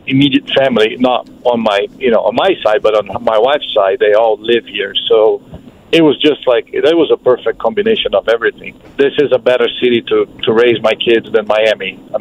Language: English